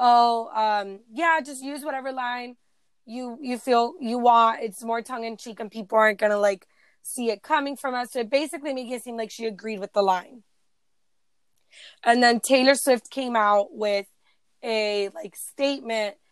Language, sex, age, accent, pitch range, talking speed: English, female, 20-39, American, 210-245 Hz, 185 wpm